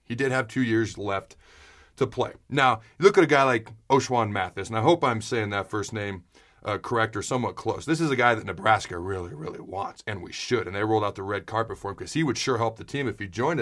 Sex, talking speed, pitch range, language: male, 265 wpm, 110-140 Hz, English